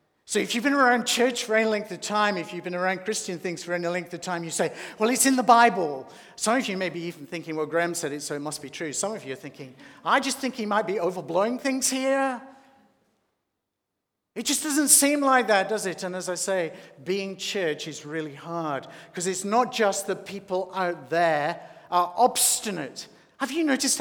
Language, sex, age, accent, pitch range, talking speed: English, male, 50-69, British, 170-245 Hz, 220 wpm